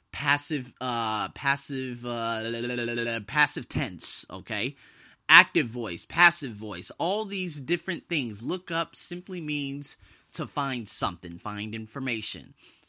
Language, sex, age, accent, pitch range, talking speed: English, male, 30-49, American, 135-210 Hz, 110 wpm